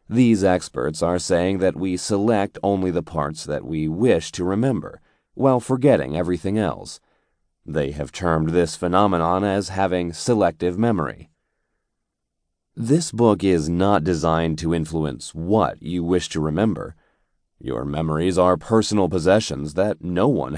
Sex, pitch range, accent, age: male, 80-105 Hz, American, 30-49